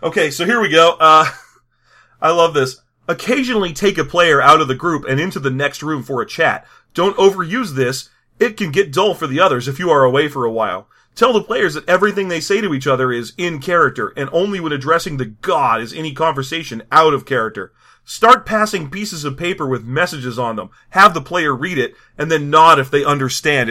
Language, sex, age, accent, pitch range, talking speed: English, male, 30-49, American, 140-190 Hz, 220 wpm